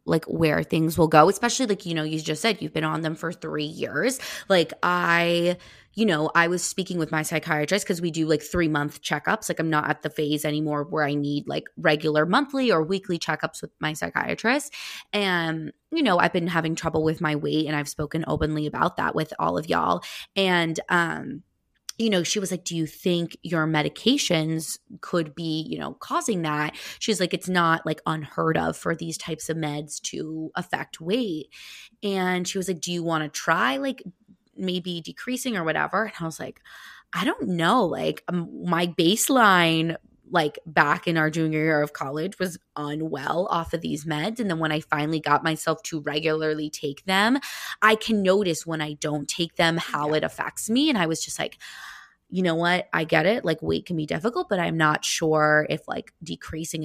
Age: 20-39